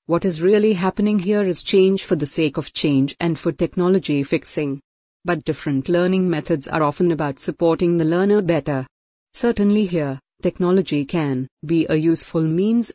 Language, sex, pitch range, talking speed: English, female, 160-200 Hz, 160 wpm